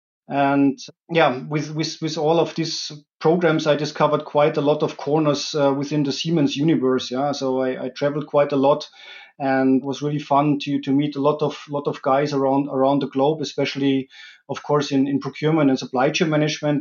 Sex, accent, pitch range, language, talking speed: male, German, 140-165 Hz, English, 200 wpm